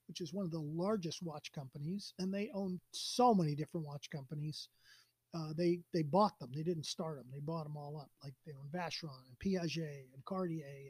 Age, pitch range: 40-59, 150-190 Hz